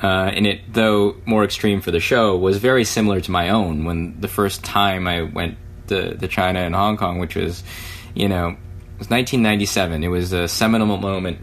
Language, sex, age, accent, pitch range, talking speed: English, male, 20-39, American, 90-110 Hz, 205 wpm